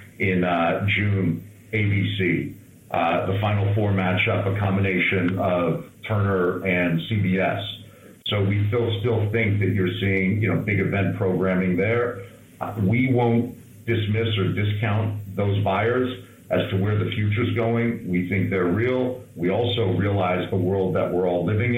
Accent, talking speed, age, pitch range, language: American, 150 wpm, 50-69, 95-110 Hz, English